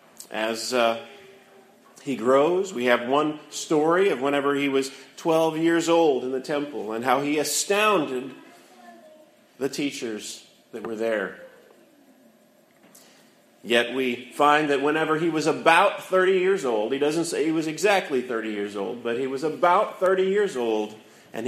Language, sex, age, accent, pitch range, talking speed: English, male, 40-59, American, 120-160 Hz, 155 wpm